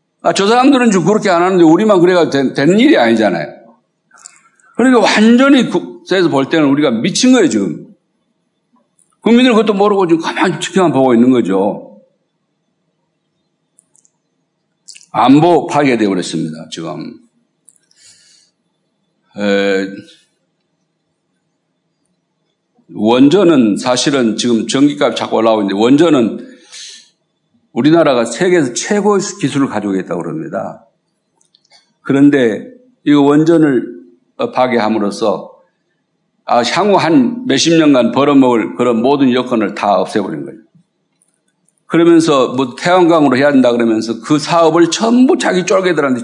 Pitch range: 125-205 Hz